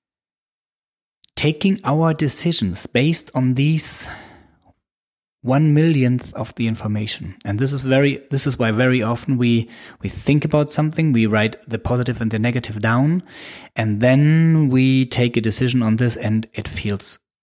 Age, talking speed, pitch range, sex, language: 30-49, 150 wpm, 105-140 Hz, male, English